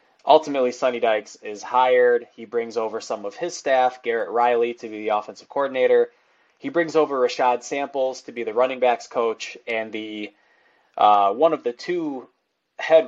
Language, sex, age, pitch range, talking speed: English, male, 20-39, 105-130 Hz, 175 wpm